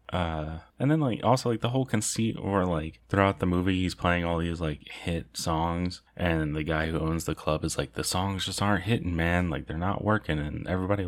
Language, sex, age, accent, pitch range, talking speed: English, male, 30-49, American, 85-100 Hz, 225 wpm